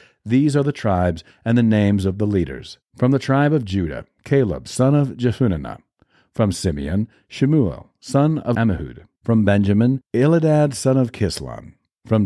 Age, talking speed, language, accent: 50-69, 155 wpm, English, American